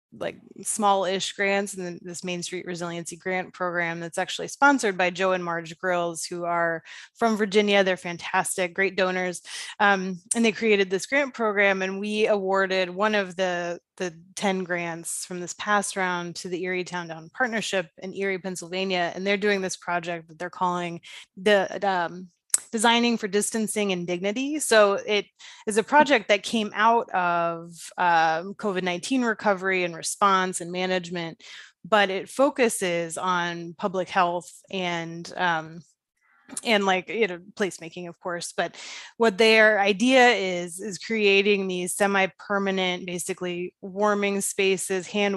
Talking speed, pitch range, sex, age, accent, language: 150 wpm, 175-205 Hz, female, 20-39, American, English